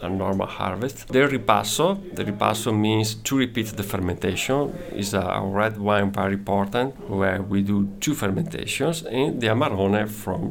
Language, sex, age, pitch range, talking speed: English, male, 40-59, 100-110 Hz, 155 wpm